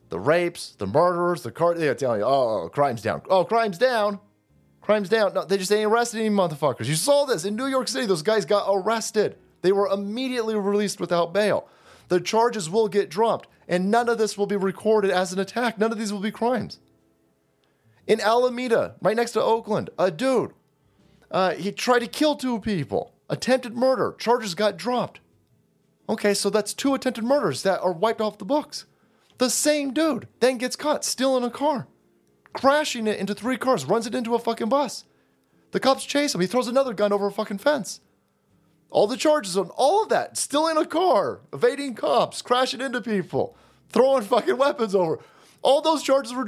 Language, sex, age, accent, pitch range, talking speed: English, male, 30-49, American, 200-270 Hz, 195 wpm